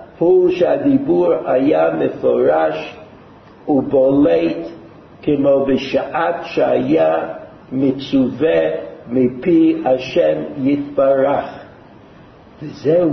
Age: 60-79